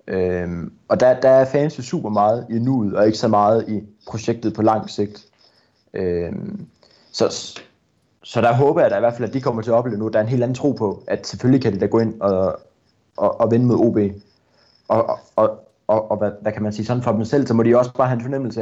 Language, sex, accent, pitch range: Danish, male, native, 105-125 Hz